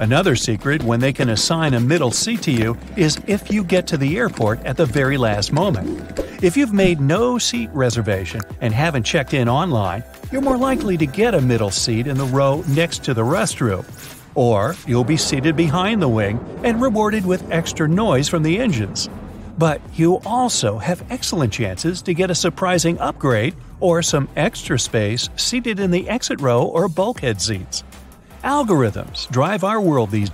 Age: 50-69